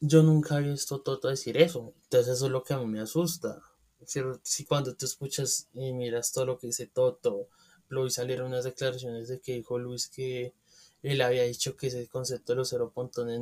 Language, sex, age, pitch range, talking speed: Spanish, male, 20-39, 125-155 Hz, 210 wpm